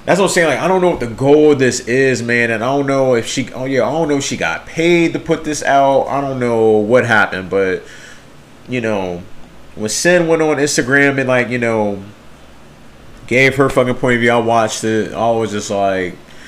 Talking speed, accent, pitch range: 235 wpm, American, 115-145 Hz